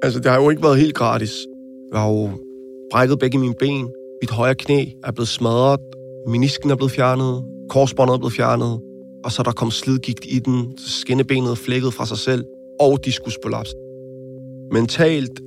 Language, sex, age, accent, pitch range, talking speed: Danish, male, 30-49, native, 115-130 Hz, 180 wpm